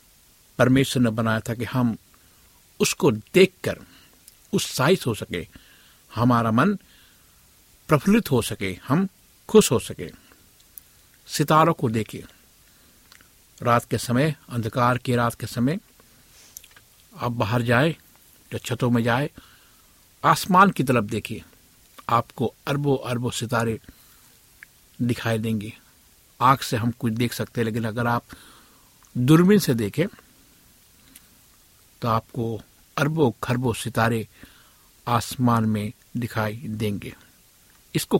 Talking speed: 115 wpm